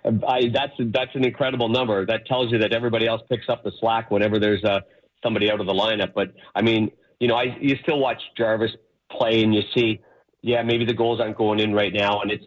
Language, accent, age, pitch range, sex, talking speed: English, American, 50-69, 100-115 Hz, male, 235 wpm